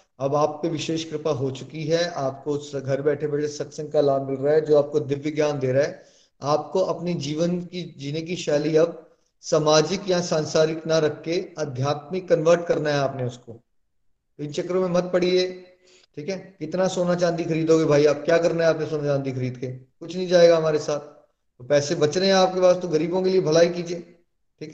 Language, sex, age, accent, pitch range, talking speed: Hindi, male, 30-49, native, 145-180 Hz, 205 wpm